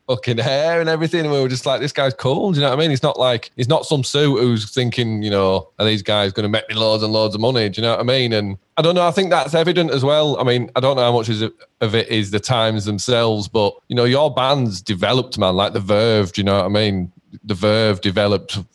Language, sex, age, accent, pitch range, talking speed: English, male, 20-39, British, 100-130 Hz, 290 wpm